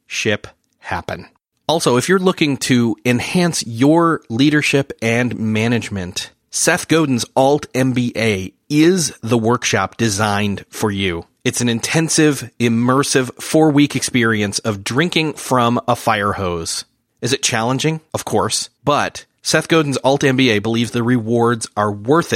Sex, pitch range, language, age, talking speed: male, 110-140 Hz, English, 30-49, 125 wpm